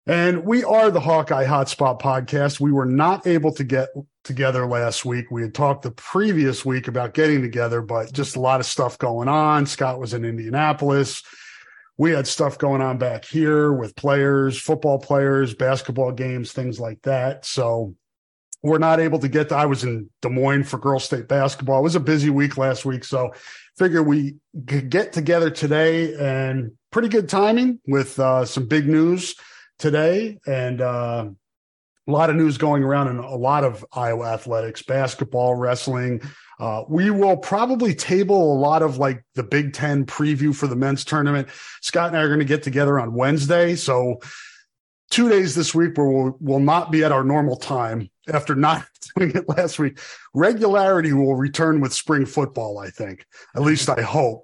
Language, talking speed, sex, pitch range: English, 185 wpm, male, 130-155 Hz